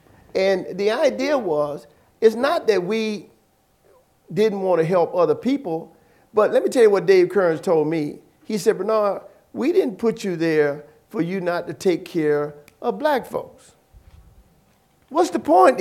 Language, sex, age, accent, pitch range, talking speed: English, male, 50-69, American, 185-280 Hz, 165 wpm